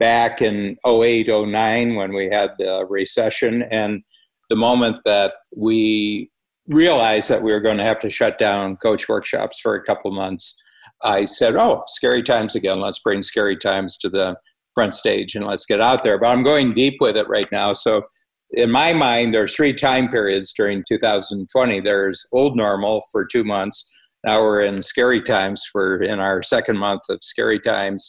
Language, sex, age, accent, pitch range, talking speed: English, male, 50-69, American, 100-120 Hz, 185 wpm